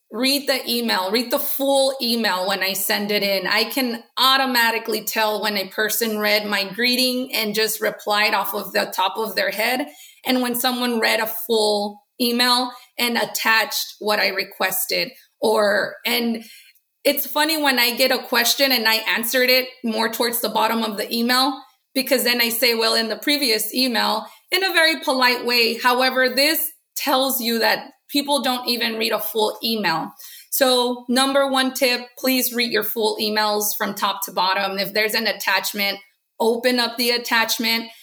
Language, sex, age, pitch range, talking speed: English, female, 30-49, 215-255 Hz, 175 wpm